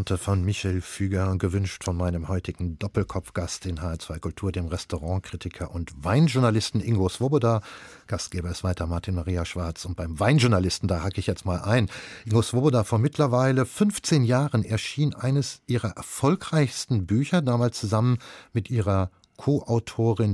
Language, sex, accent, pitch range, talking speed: German, male, German, 95-120 Hz, 145 wpm